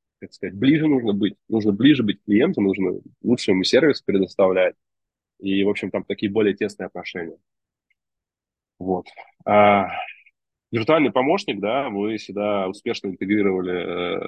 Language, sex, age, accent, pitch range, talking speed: Russian, male, 20-39, native, 95-110 Hz, 125 wpm